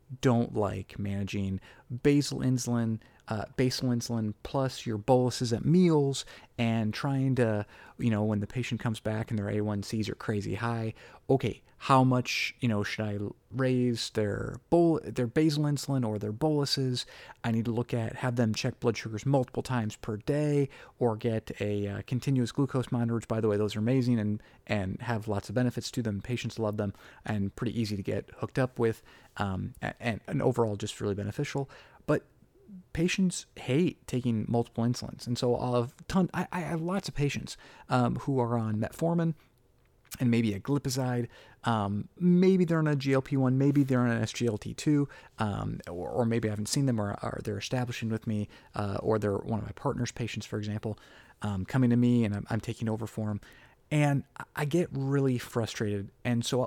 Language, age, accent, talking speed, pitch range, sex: English, 30-49, American, 190 wpm, 110-135 Hz, male